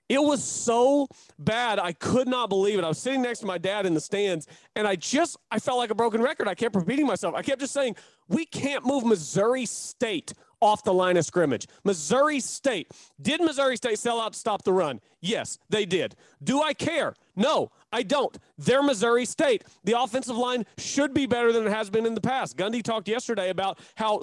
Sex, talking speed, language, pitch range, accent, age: male, 220 wpm, English, 205-260 Hz, American, 30-49